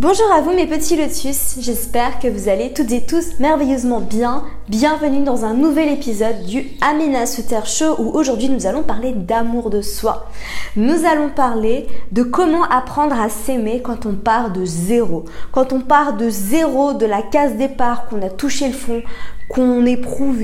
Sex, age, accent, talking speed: female, 20-39, French, 180 wpm